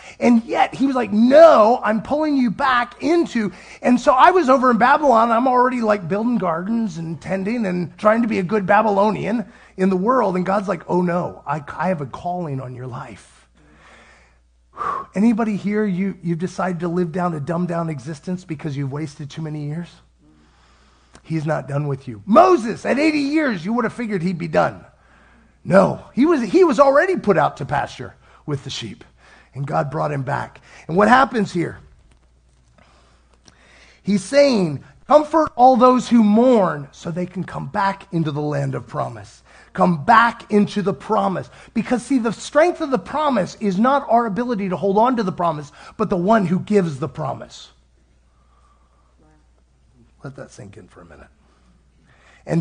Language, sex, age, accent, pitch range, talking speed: English, male, 30-49, American, 140-230 Hz, 180 wpm